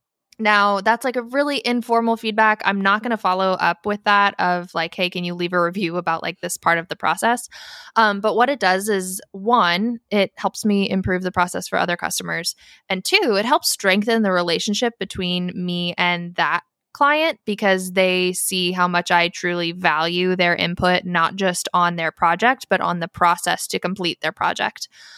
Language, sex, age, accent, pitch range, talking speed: English, female, 10-29, American, 175-210 Hz, 195 wpm